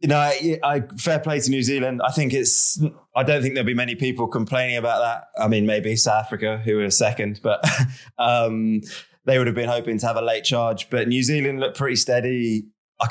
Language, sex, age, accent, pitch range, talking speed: English, male, 20-39, British, 105-125 Hz, 225 wpm